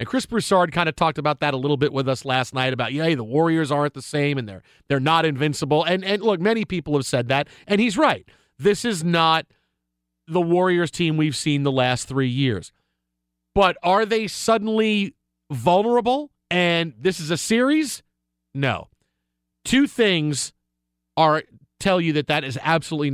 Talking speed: 180 wpm